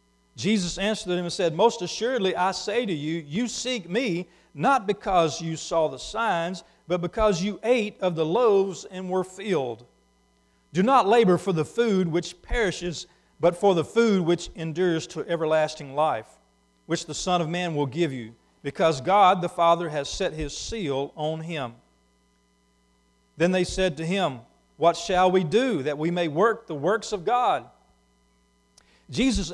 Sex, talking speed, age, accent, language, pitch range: male, 170 wpm, 50-69, American, English, 170-205 Hz